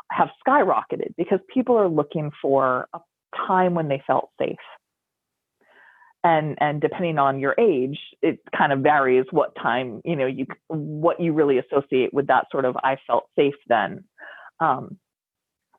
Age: 30-49